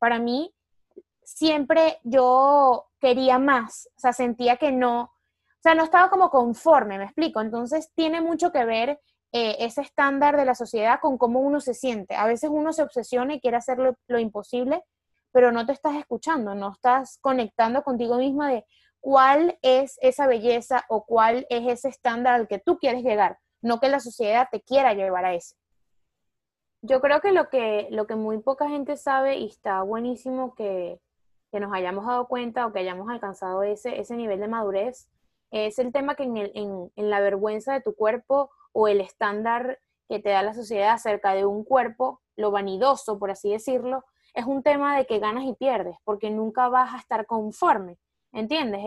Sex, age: female, 20-39